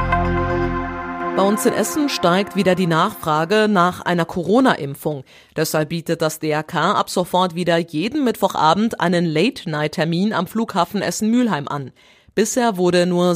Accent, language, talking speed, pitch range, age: German, German, 130 wpm, 155-200 Hz, 30-49